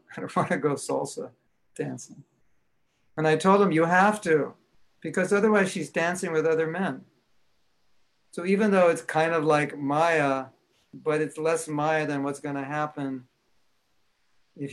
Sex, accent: male, American